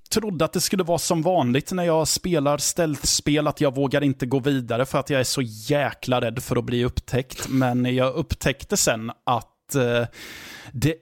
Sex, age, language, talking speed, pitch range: male, 20-39, Swedish, 195 wpm, 115-140 Hz